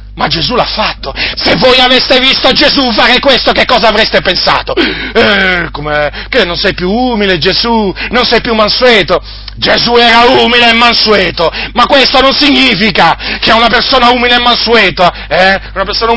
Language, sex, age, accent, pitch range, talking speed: Italian, male, 40-59, native, 150-225 Hz, 150 wpm